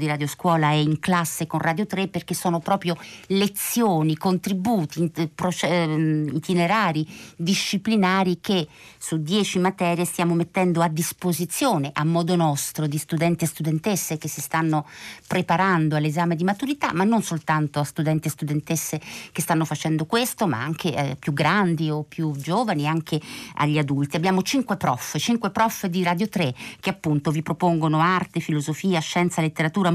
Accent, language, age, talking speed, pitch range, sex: native, Italian, 50-69, 150 wpm, 155-185 Hz, female